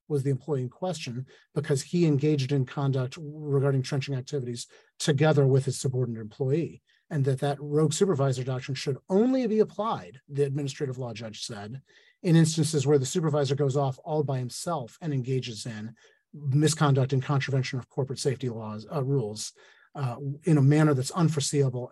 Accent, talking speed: American, 165 wpm